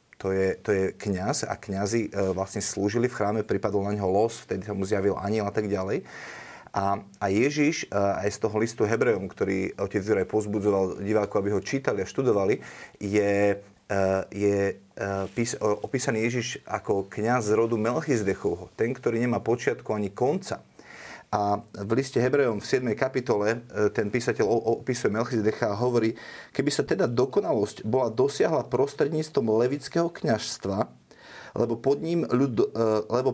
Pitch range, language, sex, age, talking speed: 105-125 Hz, Slovak, male, 30-49, 145 wpm